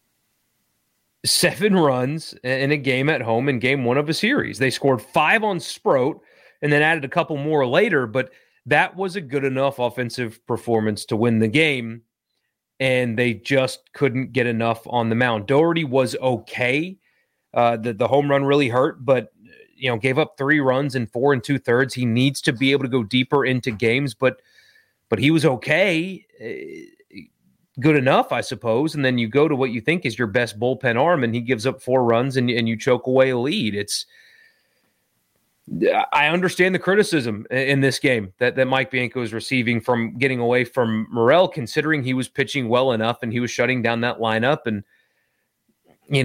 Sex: male